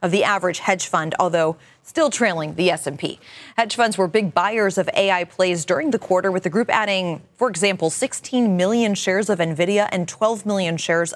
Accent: American